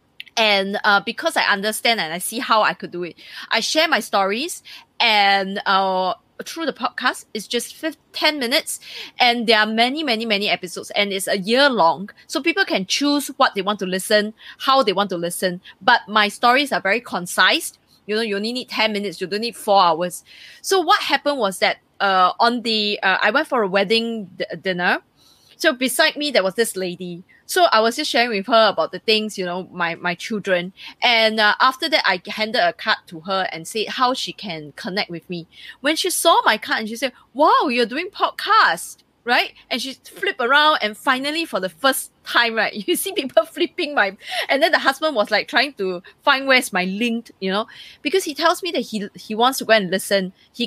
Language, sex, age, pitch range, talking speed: English, female, 20-39, 195-270 Hz, 215 wpm